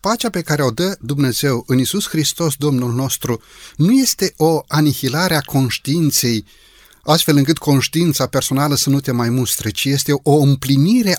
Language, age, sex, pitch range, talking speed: Romanian, 30-49, male, 130-170 Hz, 160 wpm